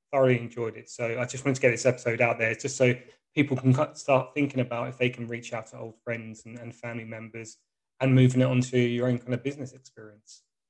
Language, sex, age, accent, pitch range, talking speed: English, male, 20-39, British, 115-130 Hz, 240 wpm